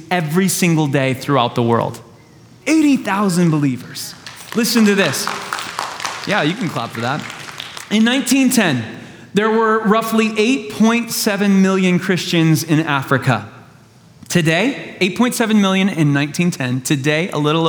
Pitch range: 160-215 Hz